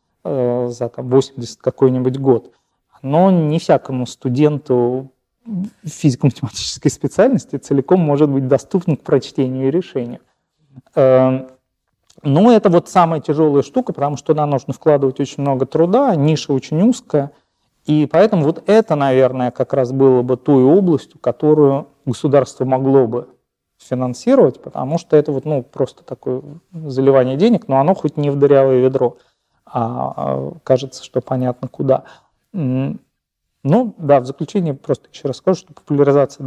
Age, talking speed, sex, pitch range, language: 30-49, 135 wpm, male, 130-155 Hz, Russian